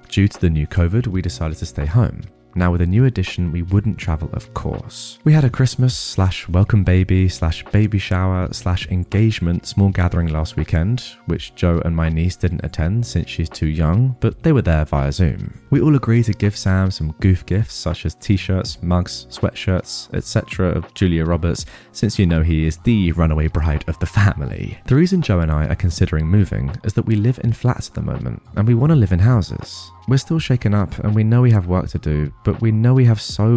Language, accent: English, British